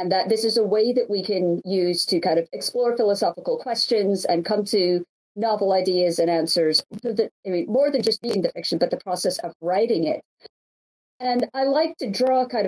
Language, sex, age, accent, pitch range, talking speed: English, female, 40-59, American, 195-265 Hz, 215 wpm